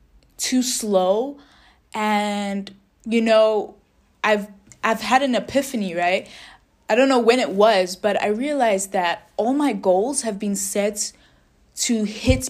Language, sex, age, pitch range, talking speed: English, female, 10-29, 185-230 Hz, 140 wpm